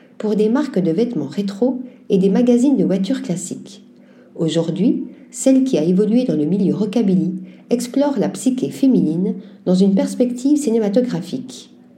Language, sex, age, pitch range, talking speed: French, female, 50-69, 185-245 Hz, 145 wpm